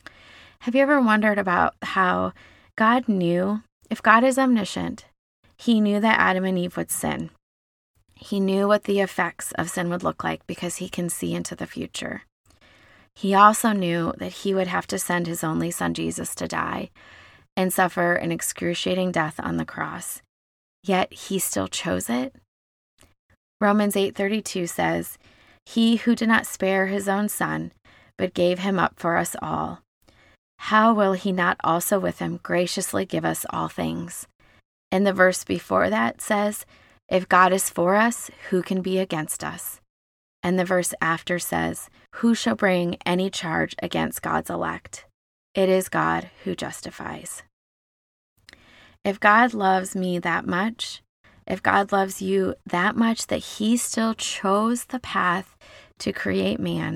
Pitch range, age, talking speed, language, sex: 160-205 Hz, 20-39, 160 wpm, English, female